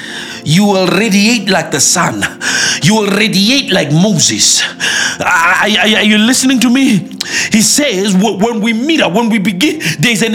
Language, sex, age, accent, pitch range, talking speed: English, male, 50-69, South African, 200-270 Hz, 160 wpm